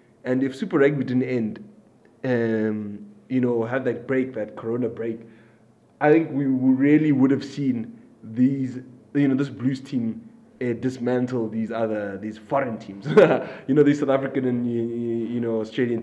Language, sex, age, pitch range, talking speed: English, male, 20-39, 120-165 Hz, 165 wpm